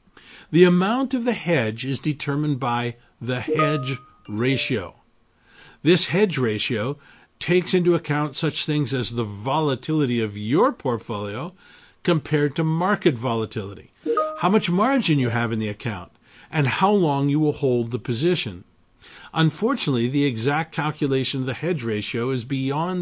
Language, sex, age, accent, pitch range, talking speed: English, male, 50-69, American, 125-175 Hz, 145 wpm